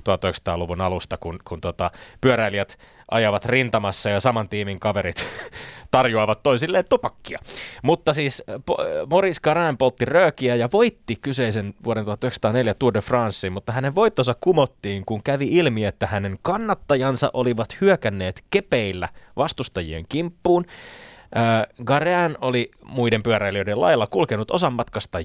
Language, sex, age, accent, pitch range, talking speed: Finnish, male, 20-39, native, 105-140 Hz, 125 wpm